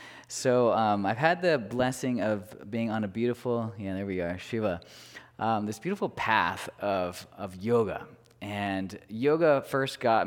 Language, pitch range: English, 90-120 Hz